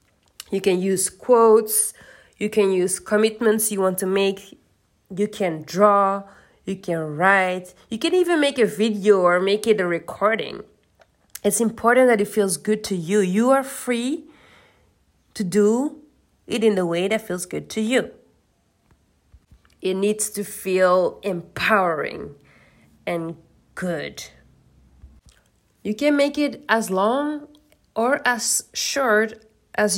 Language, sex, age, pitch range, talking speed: English, female, 30-49, 185-230 Hz, 135 wpm